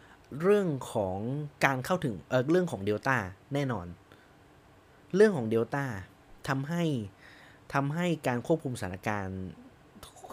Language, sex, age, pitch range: Thai, male, 20-39, 110-155 Hz